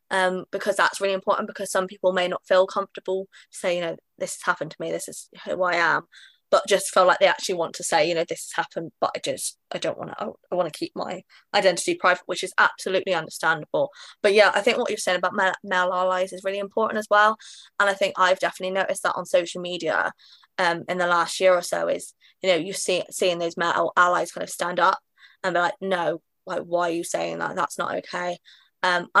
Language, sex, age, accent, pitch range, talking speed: English, female, 20-39, British, 175-200 Hz, 240 wpm